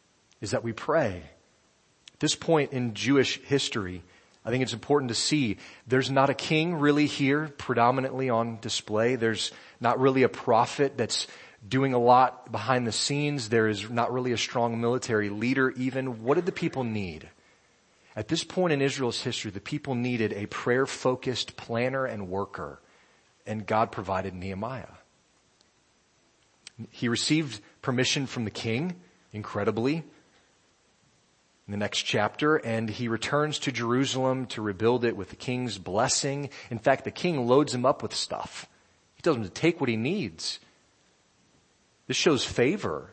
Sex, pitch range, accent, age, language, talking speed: male, 110-135 Hz, American, 30-49, English, 155 wpm